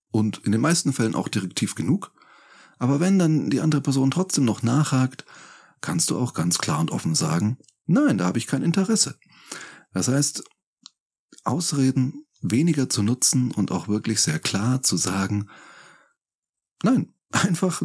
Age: 30-49